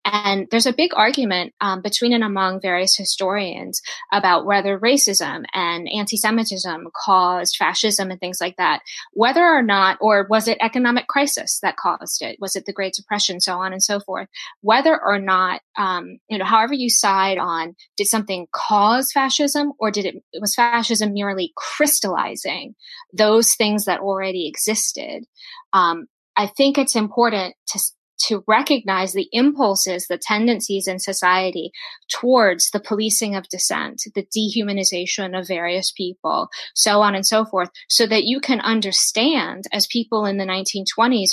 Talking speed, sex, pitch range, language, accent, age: 155 wpm, female, 190-225 Hz, English, American, 20-39